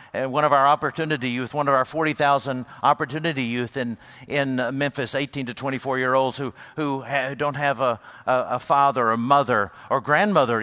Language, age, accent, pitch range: English, 50-69, American, 110-145 Hz